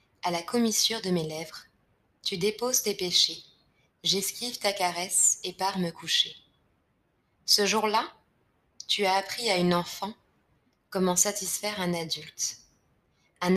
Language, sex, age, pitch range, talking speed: French, female, 20-39, 180-220 Hz, 135 wpm